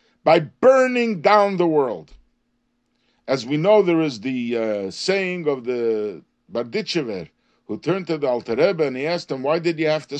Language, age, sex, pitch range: English, 50-69, male, 140-195 Hz